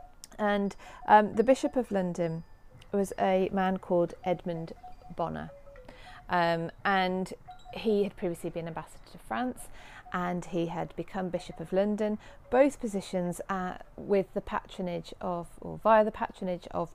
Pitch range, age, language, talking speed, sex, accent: 160-195 Hz, 40-59, English, 140 wpm, female, British